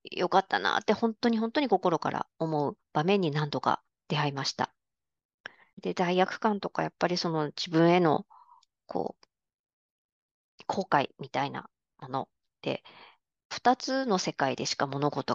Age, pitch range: 40-59, 160-230 Hz